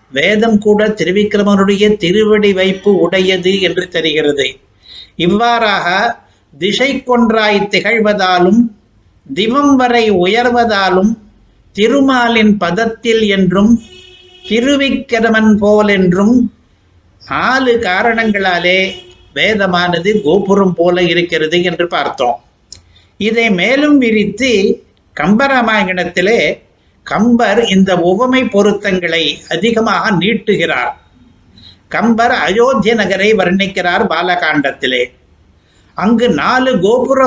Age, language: 60-79, Tamil